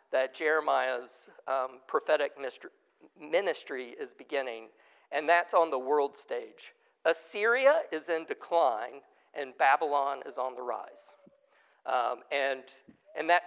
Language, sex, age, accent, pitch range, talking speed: English, male, 50-69, American, 140-235 Hz, 120 wpm